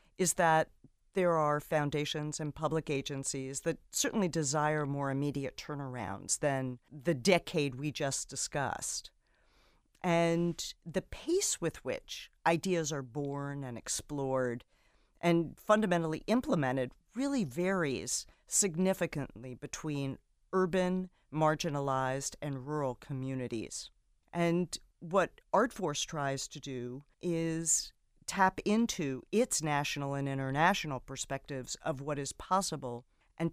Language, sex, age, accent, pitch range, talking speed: English, female, 40-59, American, 135-175 Hz, 110 wpm